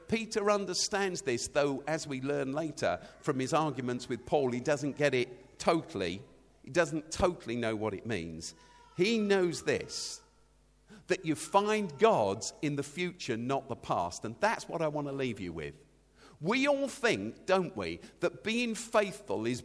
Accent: British